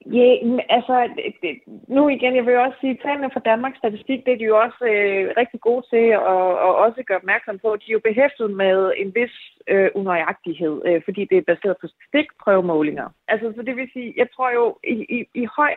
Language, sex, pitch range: Danish, female, 190-245 Hz